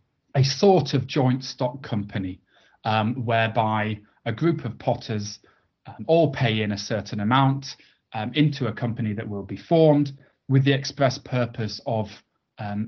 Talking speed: 155 wpm